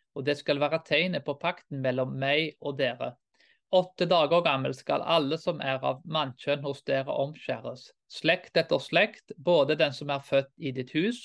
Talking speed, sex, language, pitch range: 180 wpm, male, Danish, 135-180 Hz